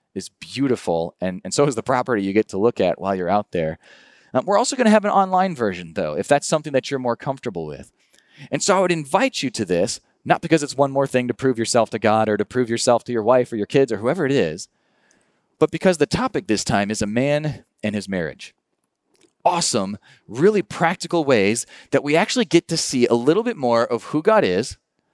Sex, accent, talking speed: male, American, 235 wpm